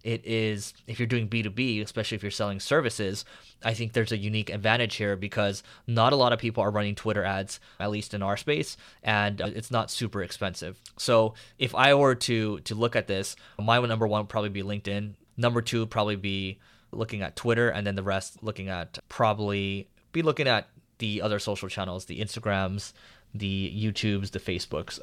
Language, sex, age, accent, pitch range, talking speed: English, male, 20-39, American, 100-115 Hz, 195 wpm